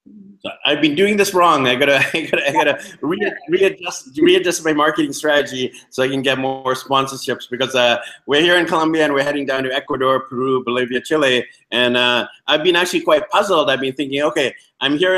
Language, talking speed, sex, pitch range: English, 205 wpm, male, 130-170 Hz